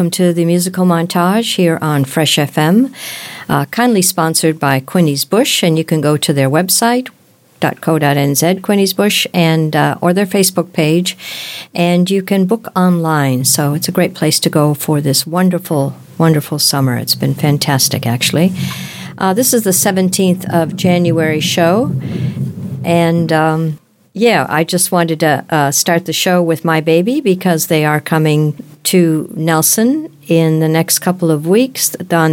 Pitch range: 150-185 Hz